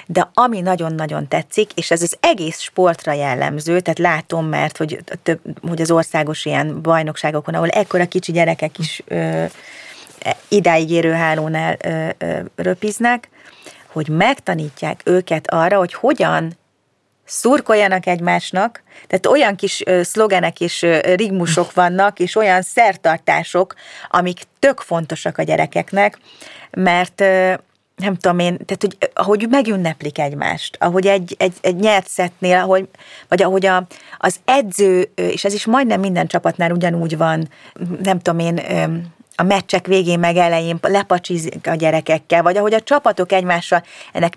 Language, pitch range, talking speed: Hungarian, 165-195 Hz, 135 wpm